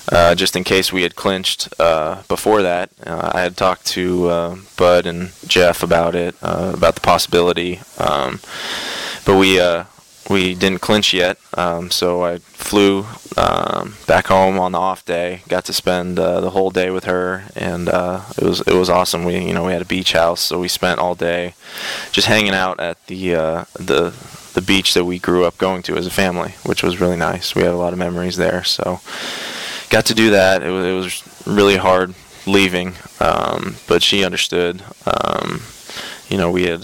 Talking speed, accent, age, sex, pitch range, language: 200 wpm, American, 20-39, male, 85-95 Hz, English